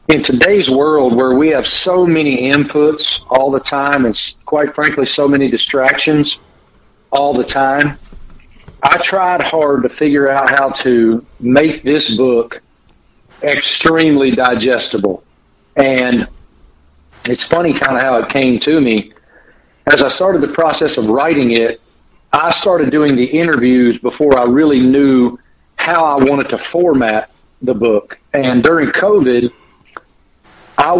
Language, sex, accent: English, male, American